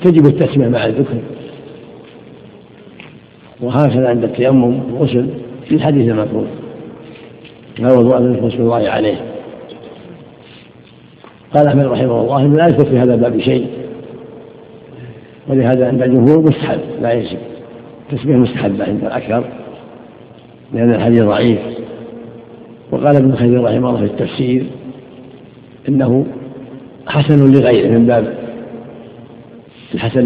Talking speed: 105 wpm